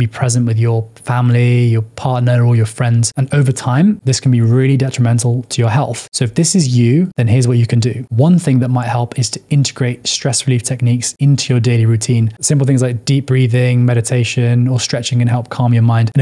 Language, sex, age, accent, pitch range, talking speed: English, male, 10-29, British, 120-135 Hz, 225 wpm